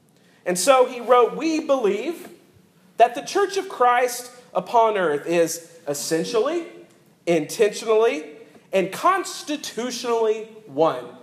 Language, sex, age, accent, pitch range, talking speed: English, male, 40-59, American, 190-245 Hz, 100 wpm